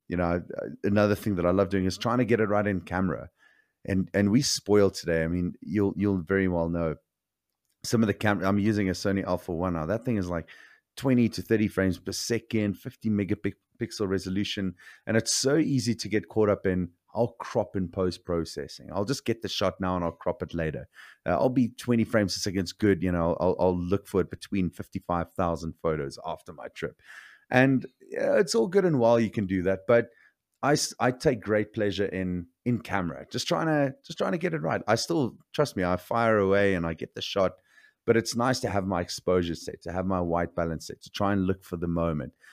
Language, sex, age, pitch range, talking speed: English, male, 30-49, 90-110 Hz, 225 wpm